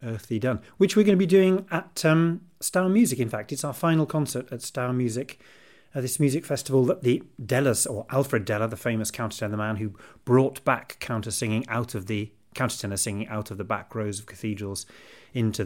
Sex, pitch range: male, 105-130 Hz